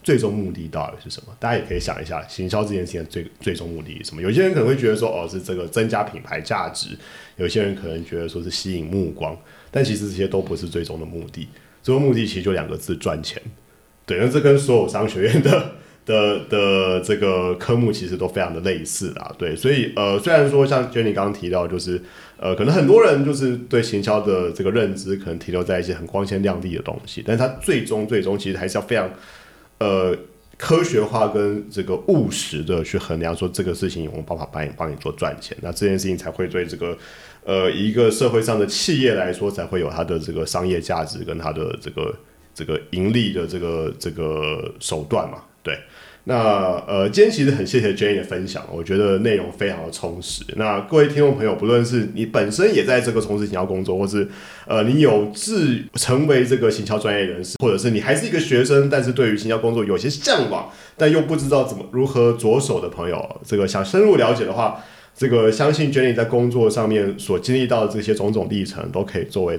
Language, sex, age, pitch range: Chinese, male, 30-49, 90-120 Hz